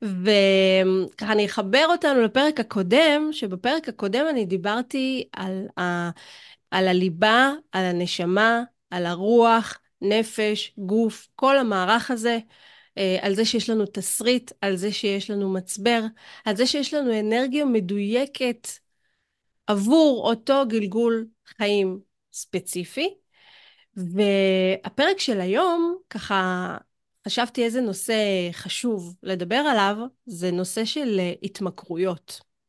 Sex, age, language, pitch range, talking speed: female, 30-49, Hebrew, 190-245 Hz, 105 wpm